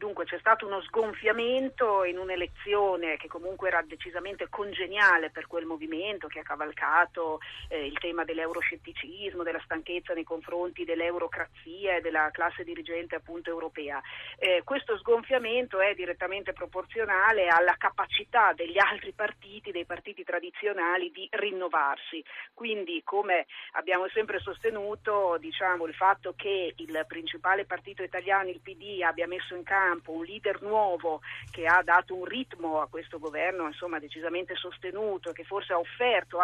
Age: 40-59